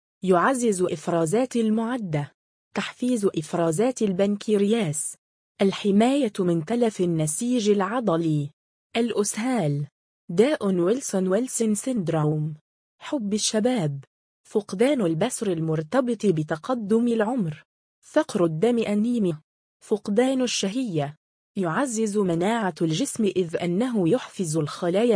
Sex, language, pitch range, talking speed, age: female, Arabic, 170-230 Hz, 85 wpm, 20-39